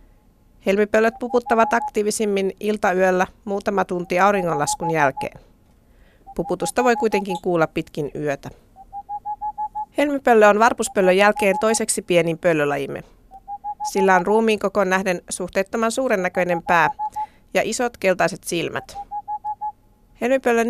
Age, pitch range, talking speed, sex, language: 30-49, 180-235 Hz, 100 wpm, female, Finnish